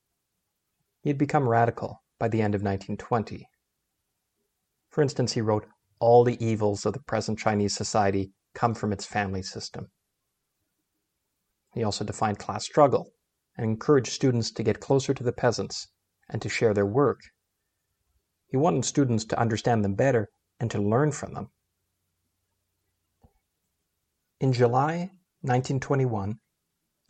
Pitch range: 100-125 Hz